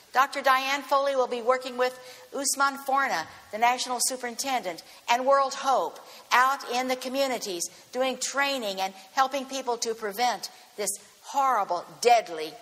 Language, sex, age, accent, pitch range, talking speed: English, female, 50-69, American, 210-270 Hz, 140 wpm